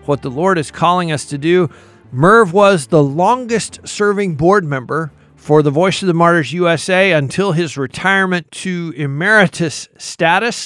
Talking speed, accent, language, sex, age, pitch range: 150 wpm, American, English, male, 50-69, 160-200 Hz